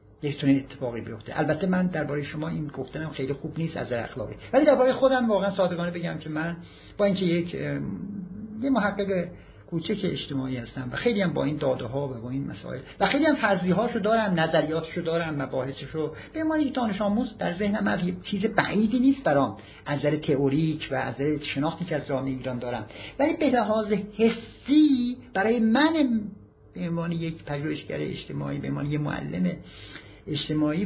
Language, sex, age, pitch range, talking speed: Persian, male, 50-69, 115-180 Hz, 165 wpm